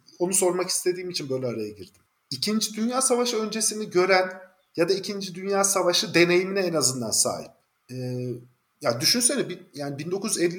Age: 50-69